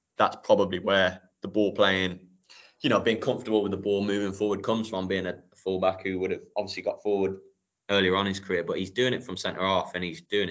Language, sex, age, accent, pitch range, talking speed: English, male, 20-39, British, 90-105 Hz, 230 wpm